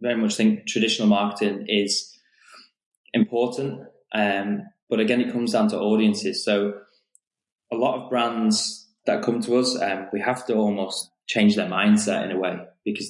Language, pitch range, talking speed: English, 95-115 Hz, 165 wpm